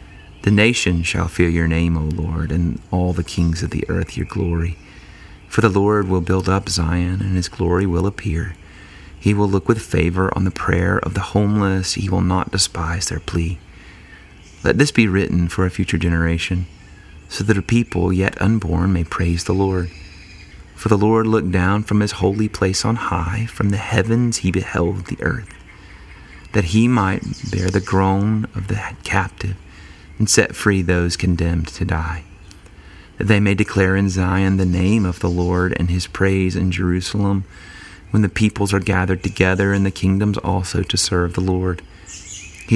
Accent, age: American, 30-49